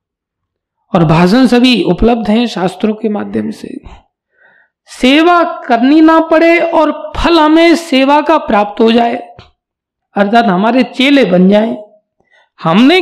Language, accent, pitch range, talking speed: Hindi, native, 170-250 Hz, 120 wpm